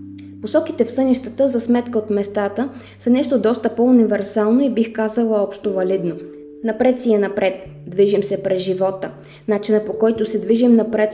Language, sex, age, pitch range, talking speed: Bulgarian, female, 20-39, 190-240 Hz, 160 wpm